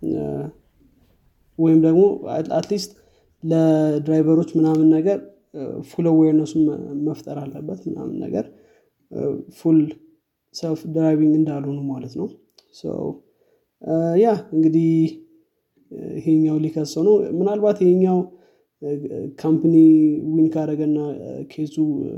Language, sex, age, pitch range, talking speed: Amharic, male, 20-39, 150-175 Hz, 80 wpm